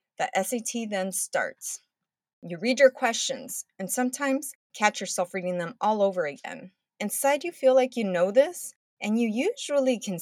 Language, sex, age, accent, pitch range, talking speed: English, female, 30-49, American, 185-260 Hz, 165 wpm